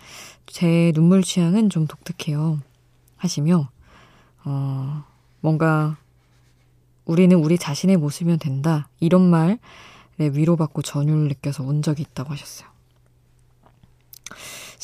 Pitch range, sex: 135-175 Hz, female